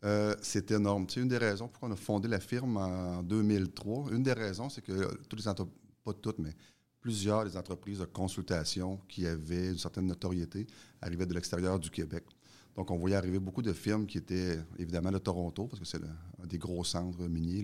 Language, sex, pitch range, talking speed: French, male, 90-105 Hz, 215 wpm